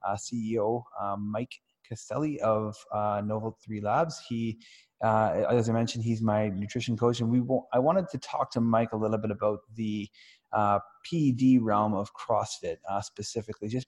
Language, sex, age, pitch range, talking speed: English, male, 20-39, 105-120 Hz, 175 wpm